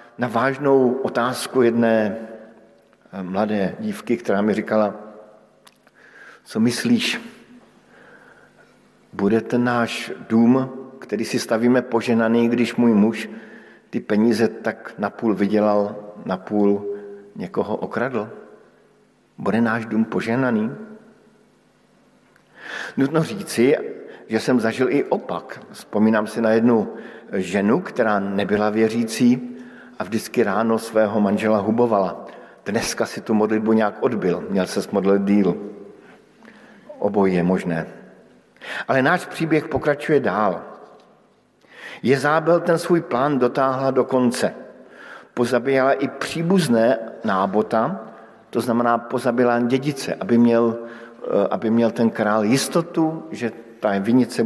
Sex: male